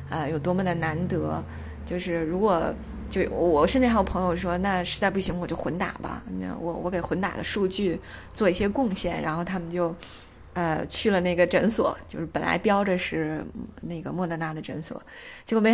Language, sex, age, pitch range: Chinese, female, 20-39, 165-200 Hz